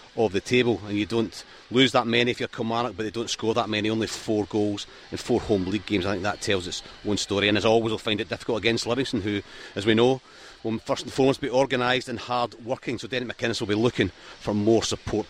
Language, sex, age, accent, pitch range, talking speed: English, male, 40-59, British, 105-115 Hz, 250 wpm